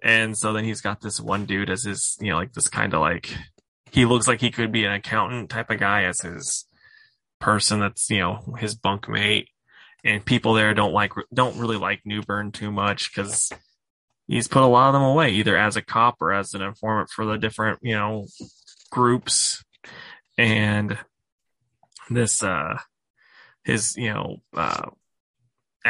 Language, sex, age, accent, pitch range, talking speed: English, male, 20-39, American, 105-125 Hz, 180 wpm